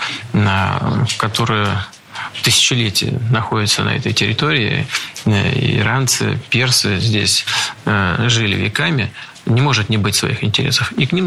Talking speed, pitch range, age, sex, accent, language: 105 wpm, 110-130 Hz, 50-69, male, native, Russian